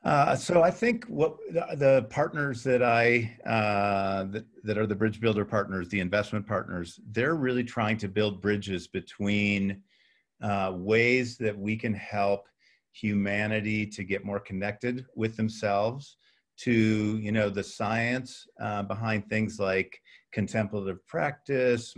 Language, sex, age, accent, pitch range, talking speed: English, male, 50-69, American, 100-115 Hz, 140 wpm